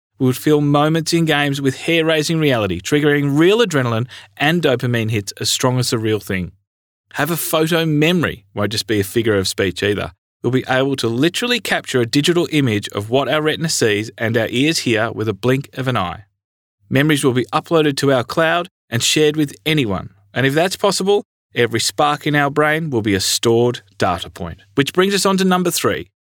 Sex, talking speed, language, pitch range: male, 210 wpm, English, 110-155 Hz